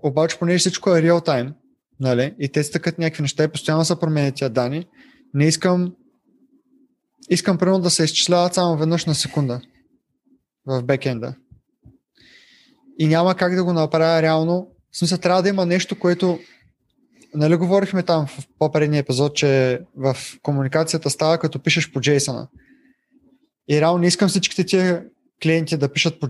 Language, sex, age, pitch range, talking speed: Bulgarian, male, 20-39, 150-185 Hz, 150 wpm